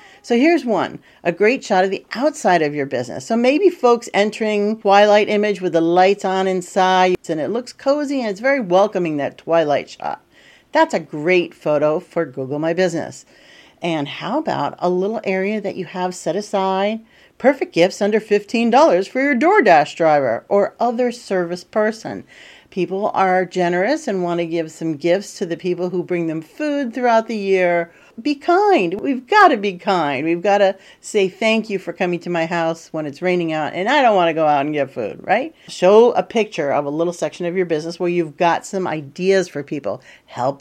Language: English